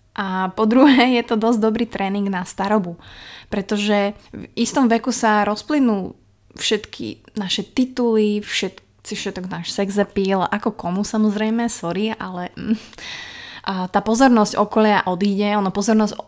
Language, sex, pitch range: Slovak, female, 185-220 Hz